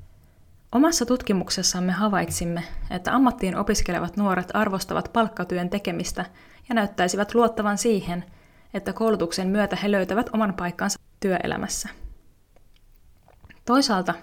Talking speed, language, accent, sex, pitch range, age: 95 wpm, Finnish, native, female, 175-210 Hz, 20-39